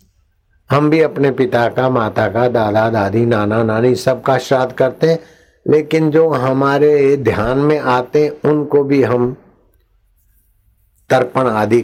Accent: native